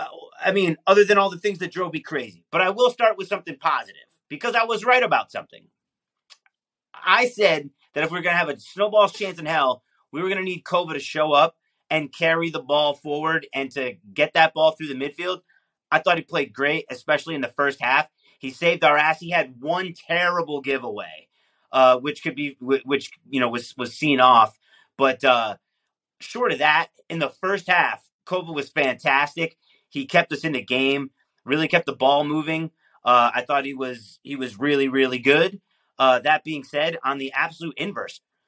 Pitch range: 140-175 Hz